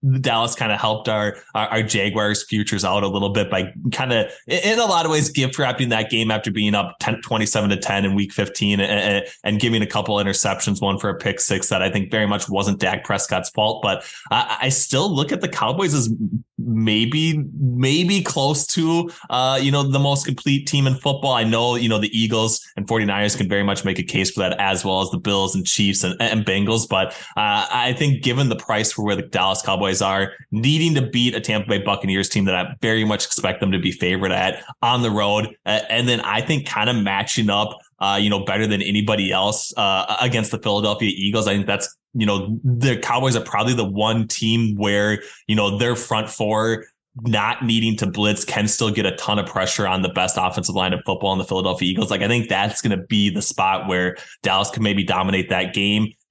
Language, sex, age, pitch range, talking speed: English, male, 20-39, 100-120 Hz, 225 wpm